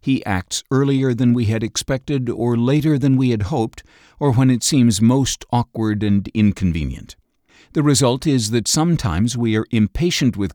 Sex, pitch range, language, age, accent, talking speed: male, 95-125 Hz, English, 60-79, American, 170 wpm